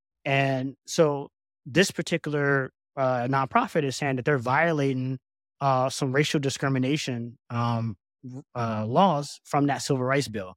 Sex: male